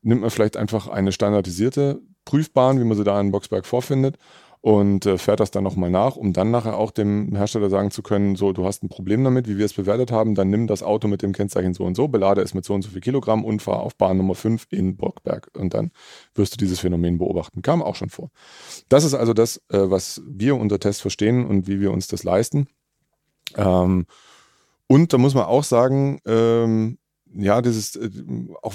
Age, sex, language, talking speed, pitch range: 30-49, male, German, 220 wpm, 100-120 Hz